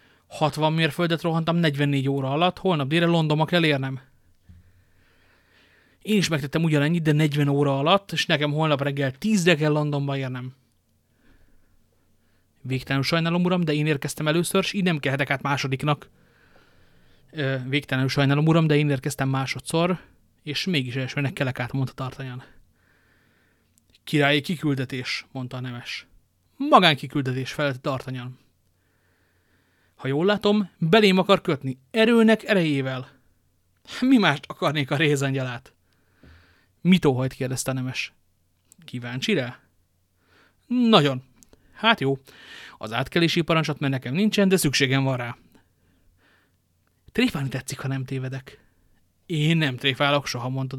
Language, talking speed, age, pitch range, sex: Hungarian, 120 wpm, 30-49, 115-155 Hz, male